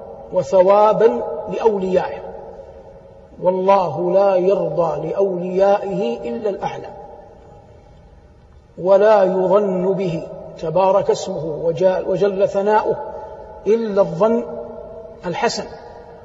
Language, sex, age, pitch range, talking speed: Arabic, male, 50-69, 190-220 Hz, 65 wpm